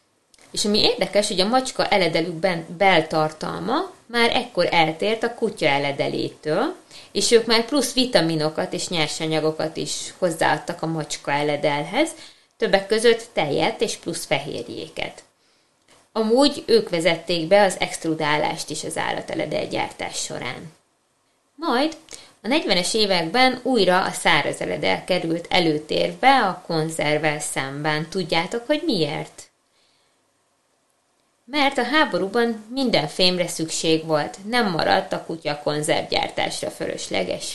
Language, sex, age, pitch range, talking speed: Hungarian, female, 20-39, 160-235 Hz, 115 wpm